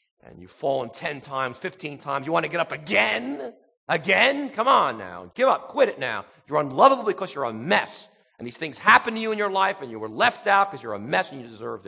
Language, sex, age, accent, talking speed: English, male, 40-59, American, 250 wpm